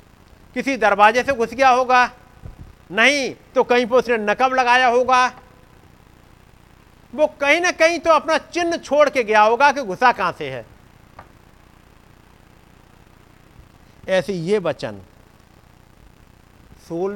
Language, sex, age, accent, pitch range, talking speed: Hindi, male, 50-69, native, 170-245 Hz, 120 wpm